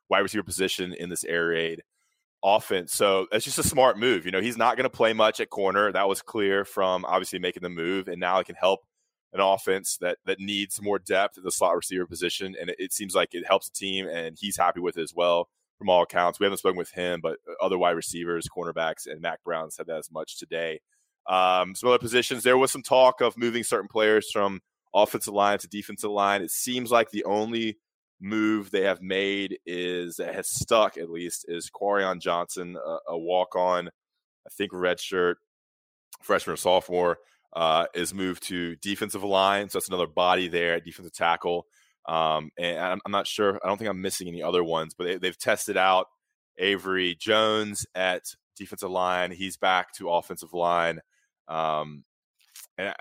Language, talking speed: English, 200 wpm